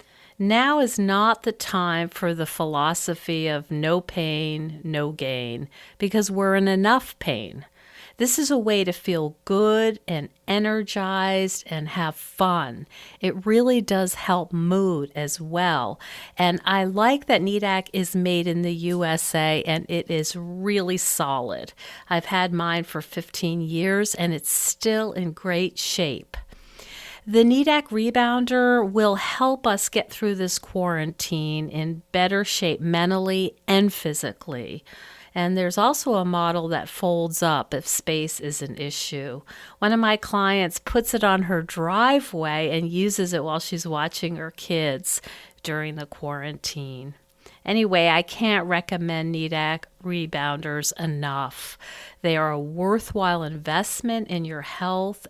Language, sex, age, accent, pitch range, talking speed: English, female, 50-69, American, 160-200 Hz, 140 wpm